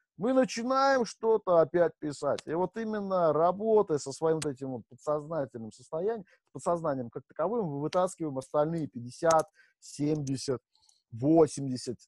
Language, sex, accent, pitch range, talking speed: Russian, male, native, 135-185 Hz, 125 wpm